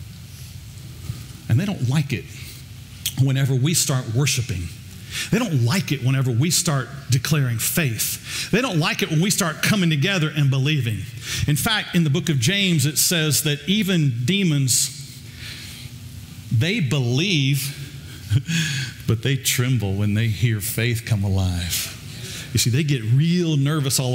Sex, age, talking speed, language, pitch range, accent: male, 50-69, 145 wpm, English, 120-145 Hz, American